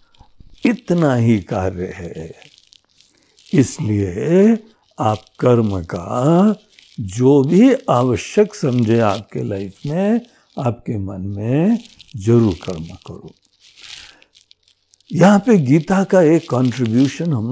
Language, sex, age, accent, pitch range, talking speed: Hindi, male, 60-79, native, 110-175 Hz, 95 wpm